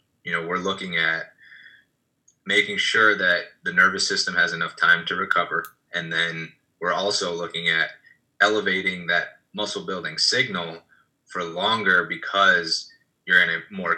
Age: 20-39